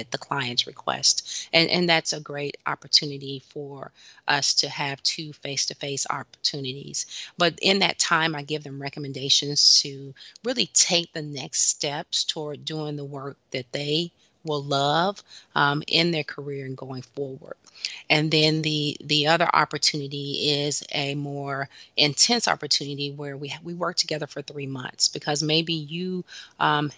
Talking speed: 155 wpm